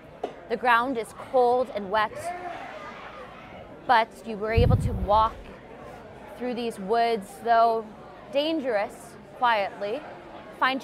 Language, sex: English, female